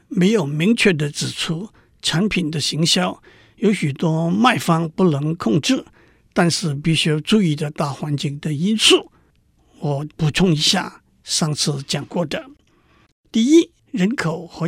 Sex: male